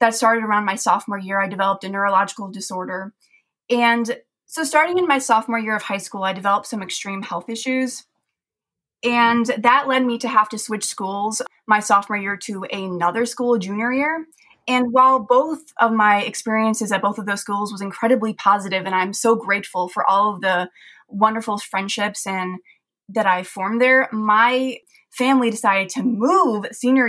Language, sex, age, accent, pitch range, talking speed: English, female, 20-39, American, 195-235 Hz, 175 wpm